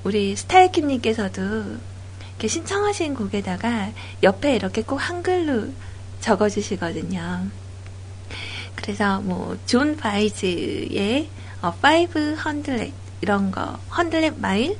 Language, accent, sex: Korean, native, female